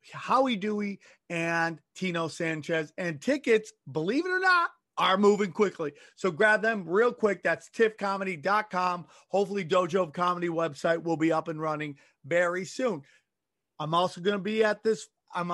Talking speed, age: 155 wpm, 30-49